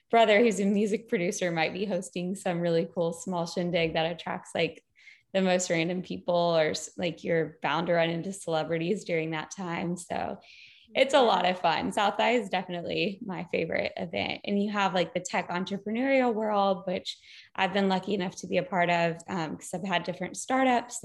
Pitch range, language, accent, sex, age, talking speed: 165-200 Hz, English, American, female, 10-29, 195 wpm